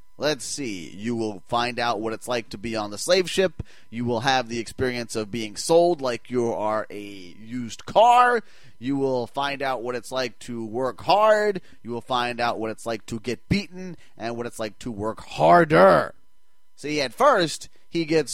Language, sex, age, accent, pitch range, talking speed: English, male, 30-49, American, 120-170 Hz, 200 wpm